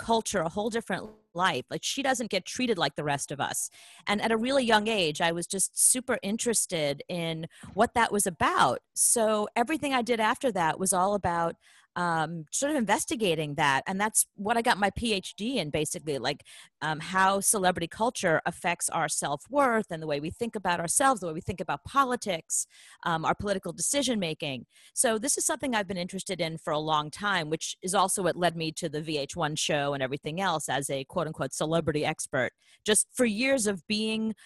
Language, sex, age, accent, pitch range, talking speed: English, female, 30-49, American, 160-220 Hz, 200 wpm